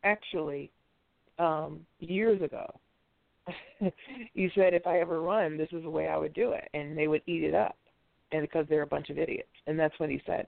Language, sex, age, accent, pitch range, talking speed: English, female, 40-59, American, 150-195 Hz, 205 wpm